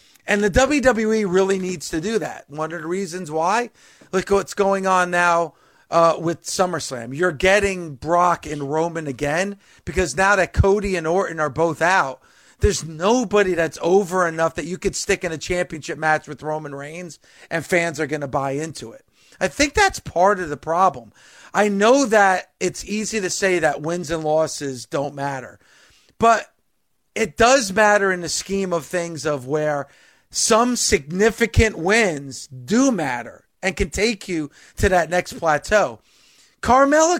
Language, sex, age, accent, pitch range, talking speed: English, male, 40-59, American, 160-205 Hz, 170 wpm